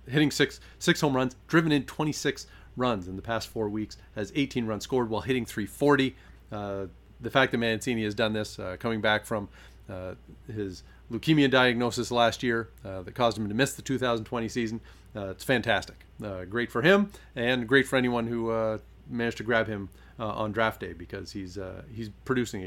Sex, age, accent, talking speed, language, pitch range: male, 40-59, American, 195 wpm, English, 105-135 Hz